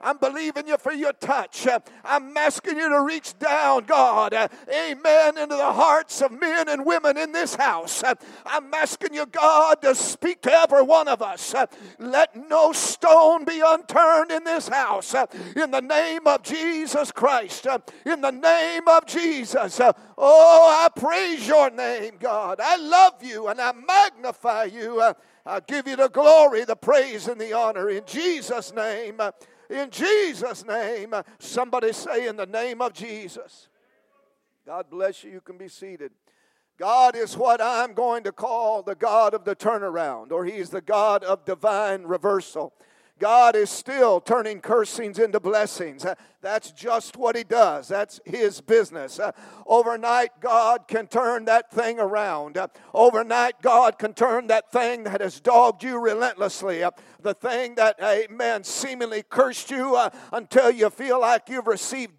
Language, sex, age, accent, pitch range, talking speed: English, male, 50-69, American, 220-295 Hz, 155 wpm